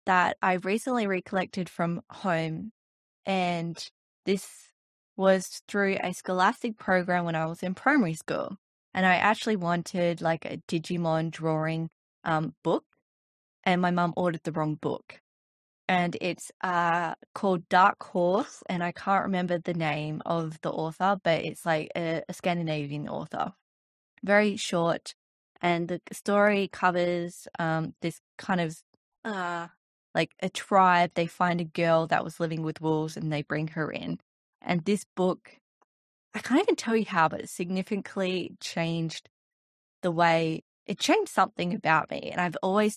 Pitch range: 160-190 Hz